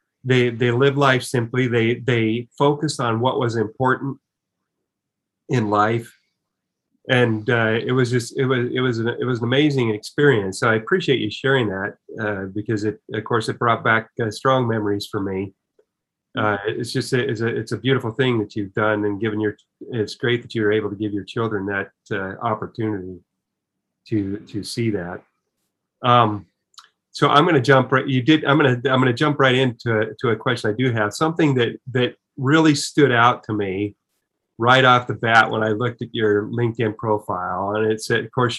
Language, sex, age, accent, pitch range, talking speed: English, male, 30-49, American, 110-130 Hz, 195 wpm